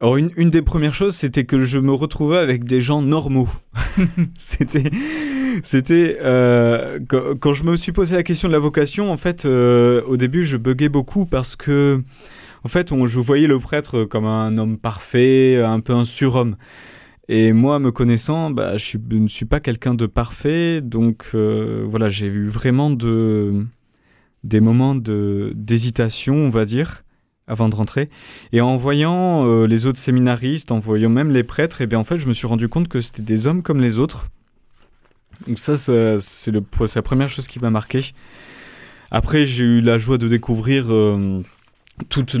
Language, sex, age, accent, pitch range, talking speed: French, male, 20-39, French, 115-140 Hz, 190 wpm